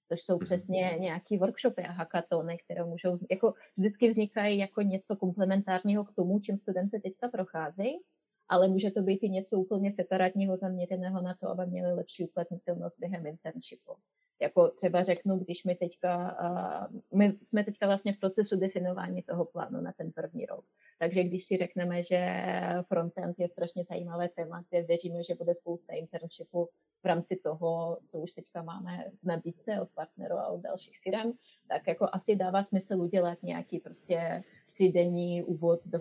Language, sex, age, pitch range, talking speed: Slovak, female, 30-49, 170-195 Hz, 165 wpm